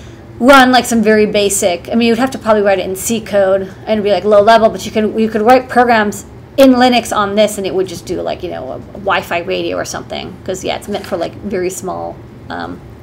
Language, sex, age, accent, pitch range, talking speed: English, female, 30-49, American, 175-225 Hz, 255 wpm